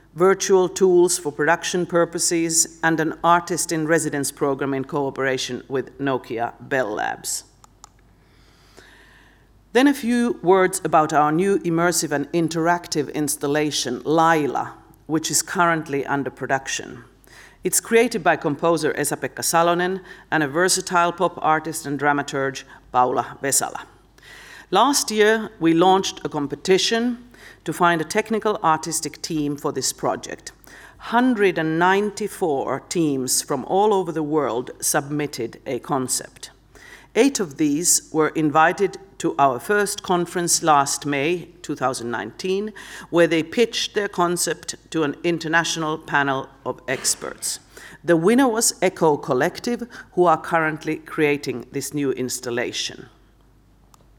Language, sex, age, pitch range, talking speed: German, female, 50-69, 145-185 Hz, 120 wpm